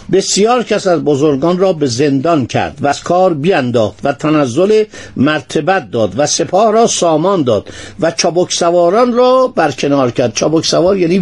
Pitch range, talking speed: 135-190 Hz, 160 wpm